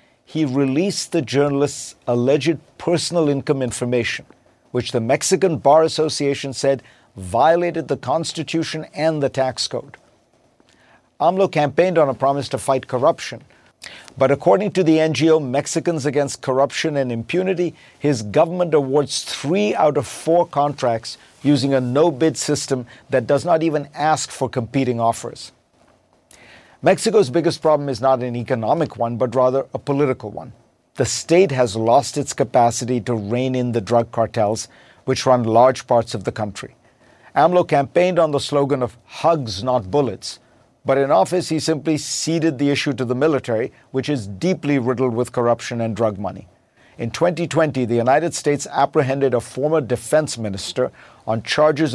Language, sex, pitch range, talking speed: English, male, 125-155 Hz, 150 wpm